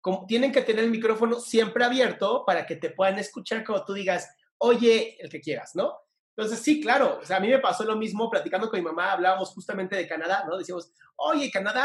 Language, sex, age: Spanish, male, 30-49